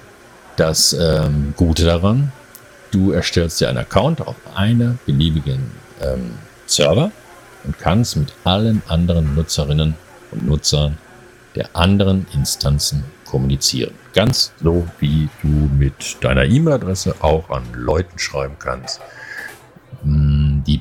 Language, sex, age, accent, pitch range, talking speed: German, male, 50-69, German, 70-95 Hz, 110 wpm